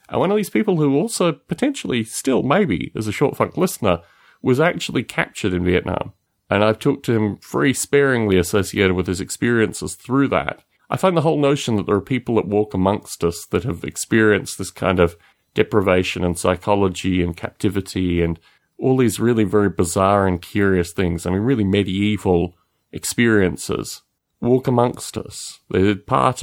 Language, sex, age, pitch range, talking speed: English, male, 30-49, 95-125 Hz, 175 wpm